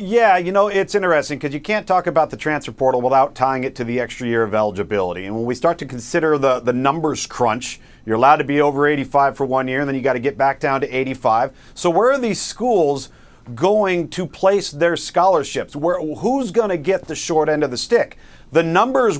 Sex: male